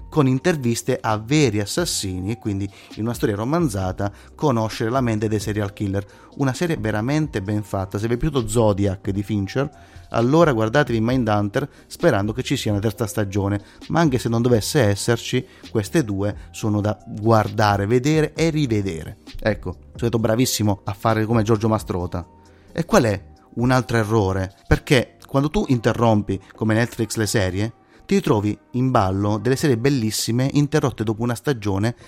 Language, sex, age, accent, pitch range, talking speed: Italian, male, 30-49, native, 100-125 Hz, 165 wpm